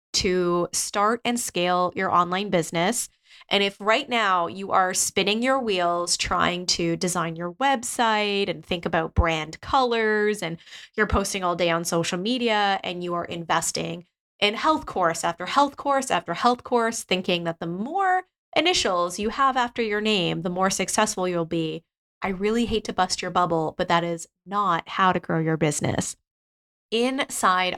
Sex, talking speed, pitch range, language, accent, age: female, 170 wpm, 170-215 Hz, English, American, 20-39